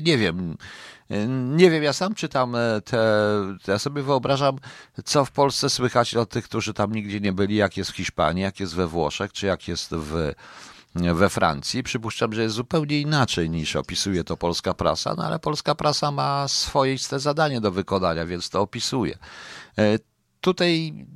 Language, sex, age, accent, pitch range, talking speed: Polish, male, 50-69, native, 90-130 Hz, 165 wpm